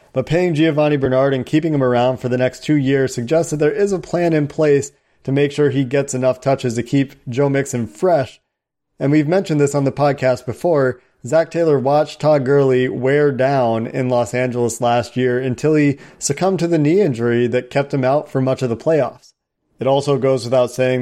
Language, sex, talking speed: English, male, 210 wpm